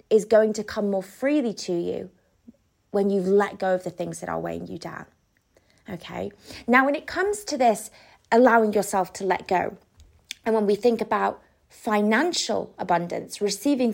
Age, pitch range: 20-39, 195-255 Hz